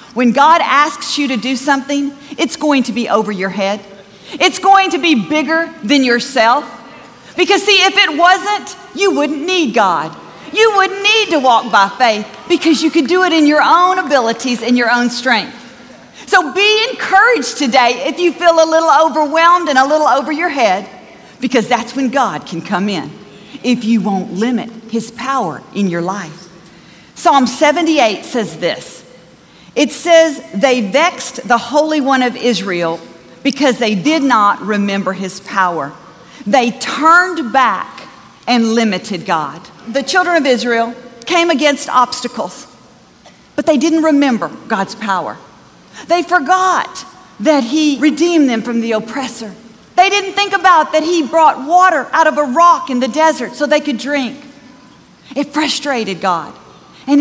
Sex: female